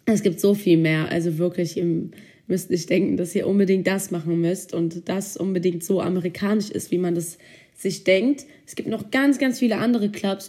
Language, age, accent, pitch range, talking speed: German, 20-39, German, 175-205 Hz, 205 wpm